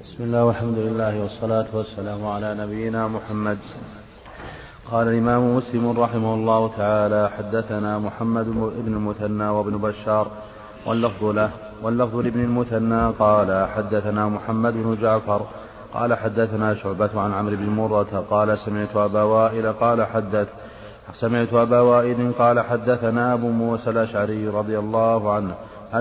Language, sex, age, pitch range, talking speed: Arabic, male, 30-49, 105-115 Hz, 125 wpm